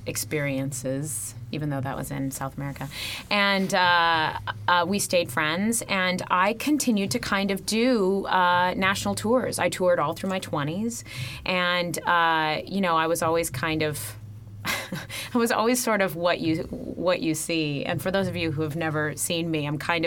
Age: 30-49